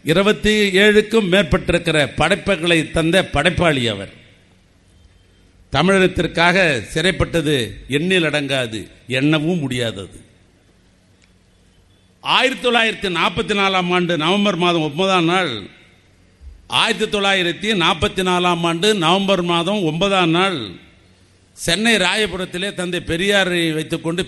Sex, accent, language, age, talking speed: male, native, Tamil, 50-69, 85 wpm